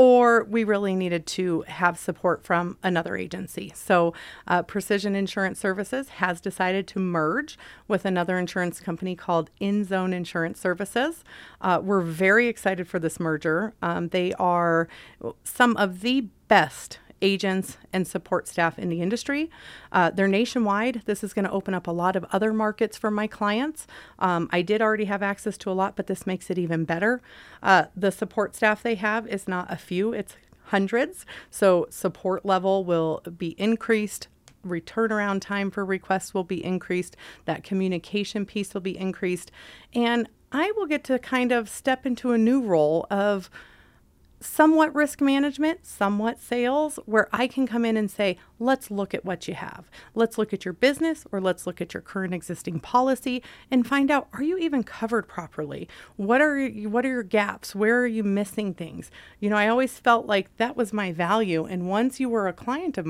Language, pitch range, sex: English, 180-235 Hz, female